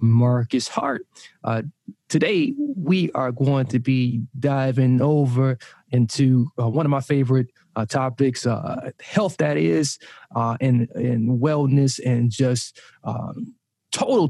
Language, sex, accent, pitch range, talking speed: English, male, American, 120-145 Hz, 130 wpm